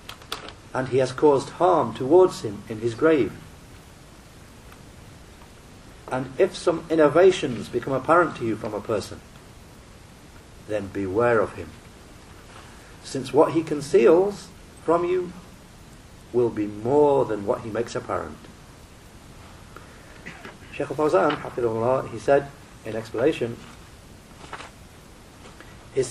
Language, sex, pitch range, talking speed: English, male, 115-155 Hz, 105 wpm